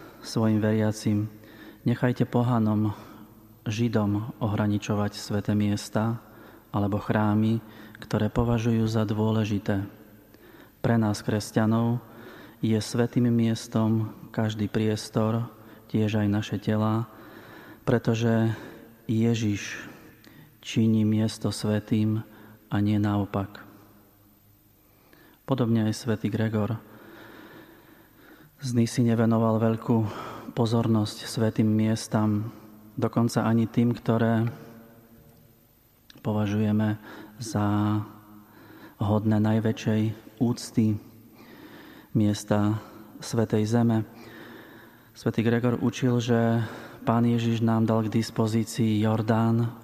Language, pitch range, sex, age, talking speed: Slovak, 105-115 Hz, male, 30-49, 80 wpm